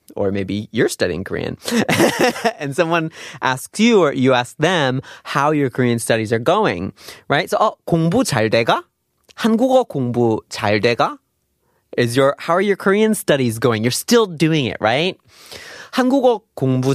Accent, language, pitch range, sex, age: American, Korean, 115-160 Hz, male, 20-39